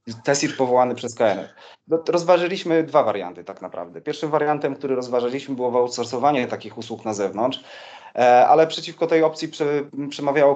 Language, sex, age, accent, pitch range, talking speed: Polish, male, 30-49, native, 115-135 Hz, 135 wpm